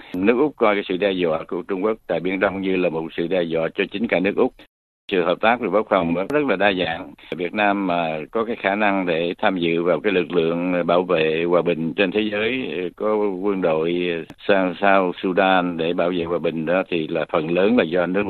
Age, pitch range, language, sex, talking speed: 60-79, 85-100 Hz, Vietnamese, male, 245 wpm